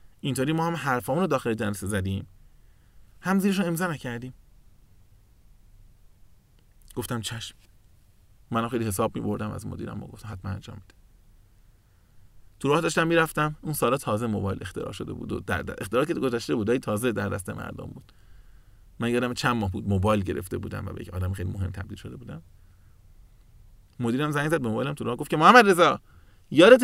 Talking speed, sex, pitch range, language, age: 165 wpm, male, 100-140 Hz, Persian, 30-49